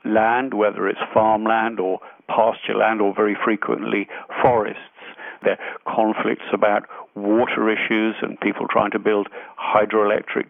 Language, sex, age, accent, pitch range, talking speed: English, male, 50-69, British, 105-120 Hz, 130 wpm